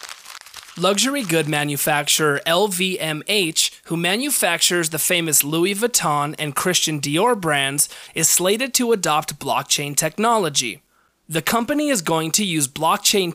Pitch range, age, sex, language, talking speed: 155-215 Hz, 20-39, male, English, 120 wpm